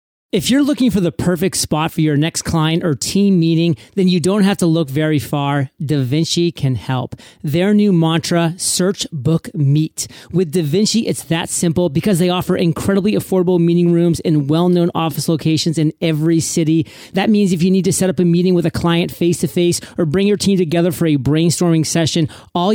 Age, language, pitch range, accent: 40-59, English, 155-180 Hz, American